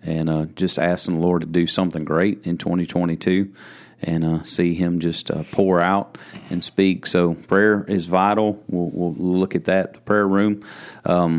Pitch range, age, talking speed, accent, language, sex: 85-95 Hz, 30-49, 180 wpm, American, English, male